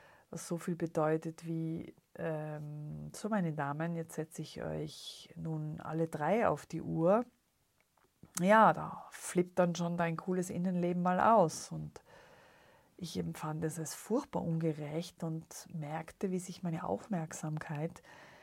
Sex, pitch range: female, 155-185 Hz